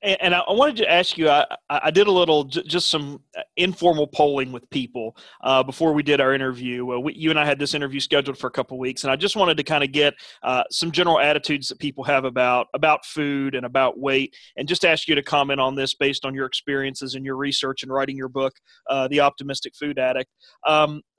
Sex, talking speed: male, 230 wpm